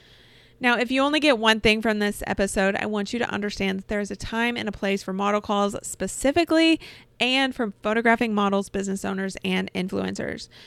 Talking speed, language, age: 195 wpm, English, 20-39